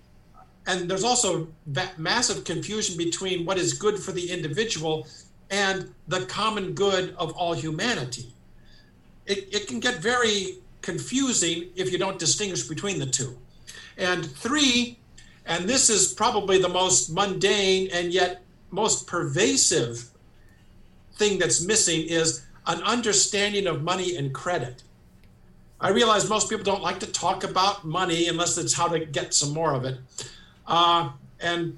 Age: 50-69